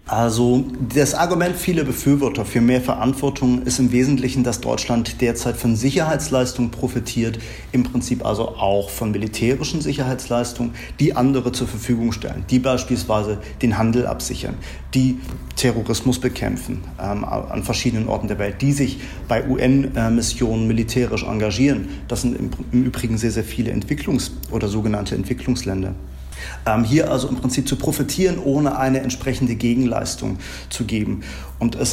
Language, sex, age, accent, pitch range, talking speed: German, male, 40-59, German, 110-130 Hz, 140 wpm